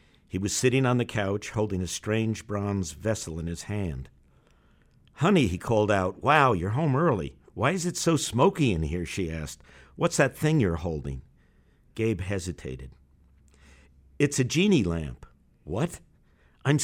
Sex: male